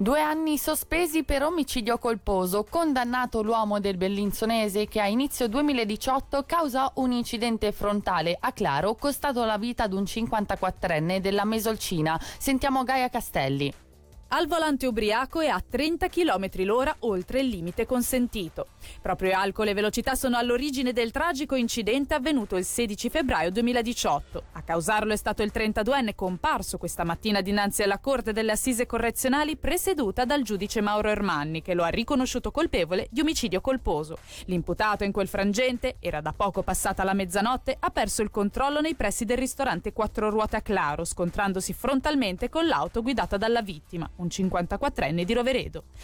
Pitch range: 195-255 Hz